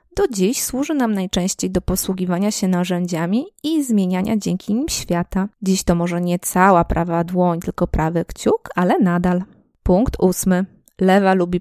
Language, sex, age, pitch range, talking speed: Polish, female, 20-39, 175-230 Hz, 155 wpm